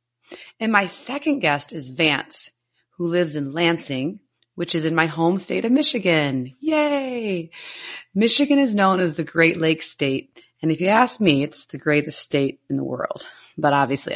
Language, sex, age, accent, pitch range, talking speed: English, female, 30-49, American, 150-220 Hz, 175 wpm